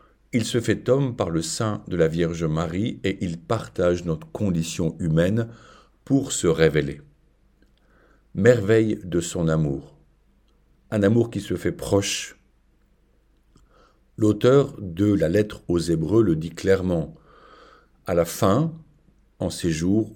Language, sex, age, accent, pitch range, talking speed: French, male, 50-69, French, 80-115 Hz, 135 wpm